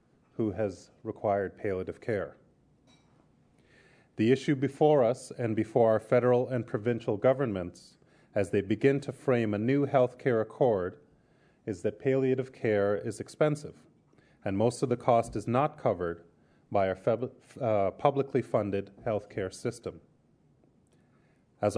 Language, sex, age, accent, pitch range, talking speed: English, male, 30-49, American, 110-135 Hz, 135 wpm